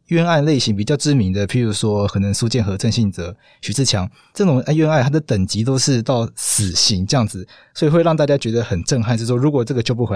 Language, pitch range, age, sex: Chinese, 115-150 Hz, 20-39, male